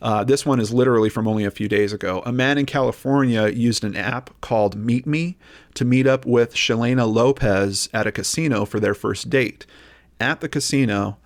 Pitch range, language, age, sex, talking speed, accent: 105-130 Hz, English, 40-59, male, 195 wpm, American